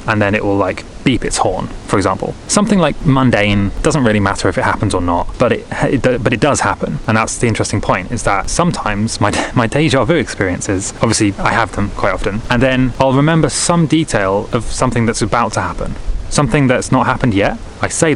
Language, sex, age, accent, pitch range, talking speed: English, male, 20-39, British, 105-130 Hz, 220 wpm